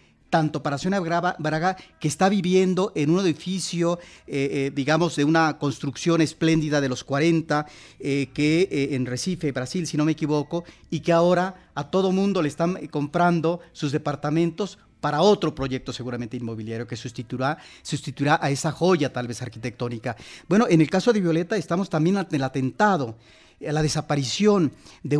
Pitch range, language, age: 140-180 Hz, Spanish, 40-59